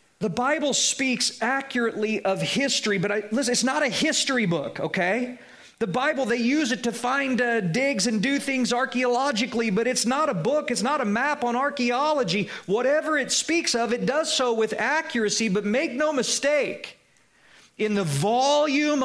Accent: American